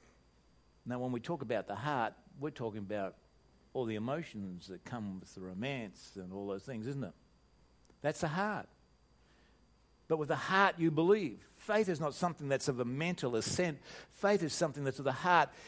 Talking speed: 190 wpm